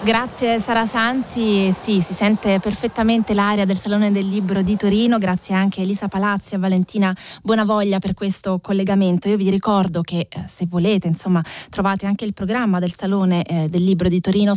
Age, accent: 20-39, native